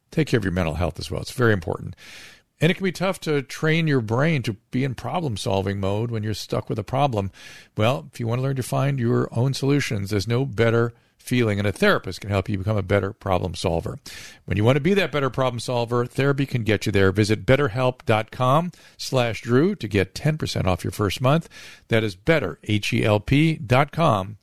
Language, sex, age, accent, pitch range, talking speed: English, male, 50-69, American, 105-135 Hz, 205 wpm